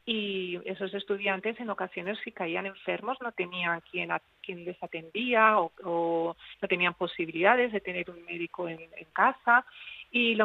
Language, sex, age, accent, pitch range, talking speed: Spanish, female, 40-59, Spanish, 175-230 Hz, 165 wpm